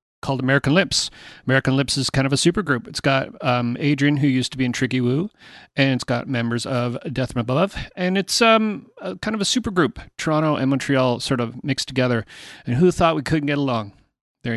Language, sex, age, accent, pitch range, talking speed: English, male, 40-59, American, 125-155 Hz, 225 wpm